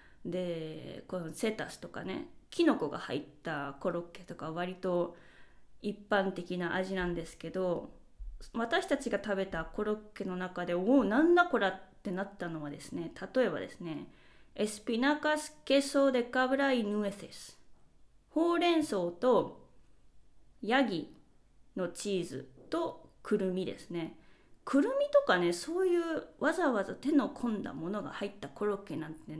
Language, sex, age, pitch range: Japanese, female, 20-39, 180-275 Hz